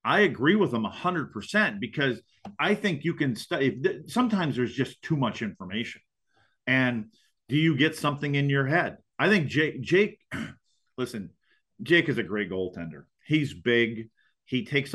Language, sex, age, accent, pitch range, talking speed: English, male, 40-59, American, 115-150 Hz, 165 wpm